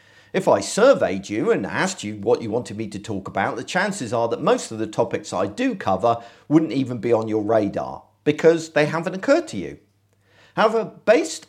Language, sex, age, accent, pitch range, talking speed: English, male, 50-69, British, 110-160 Hz, 205 wpm